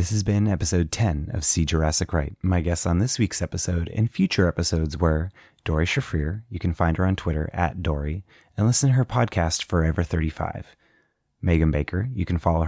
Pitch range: 85-105 Hz